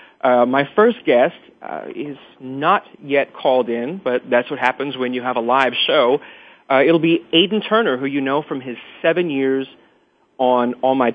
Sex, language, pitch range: male, English, 135-175 Hz